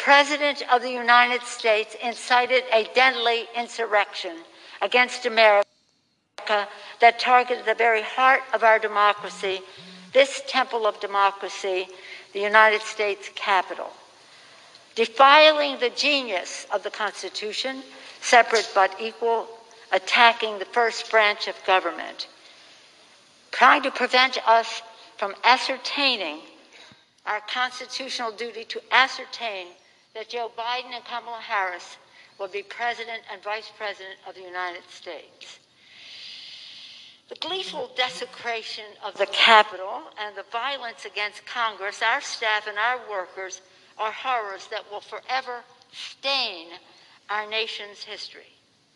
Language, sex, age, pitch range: English, female, 60-79, 205-245 Hz